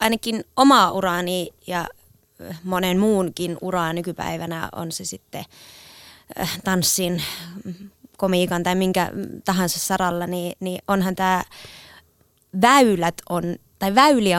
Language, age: Finnish, 20-39